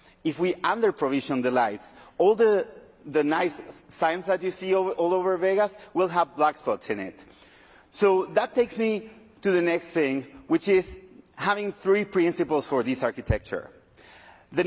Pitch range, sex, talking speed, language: 155-210 Hz, male, 160 wpm, English